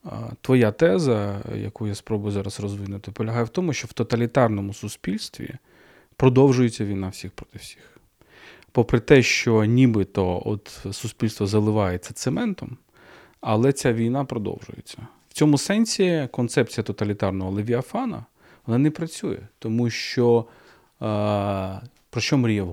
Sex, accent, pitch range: male, native, 100-120 Hz